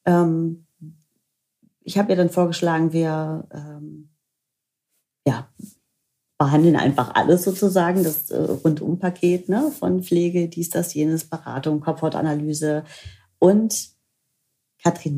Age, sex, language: 40-59, female, German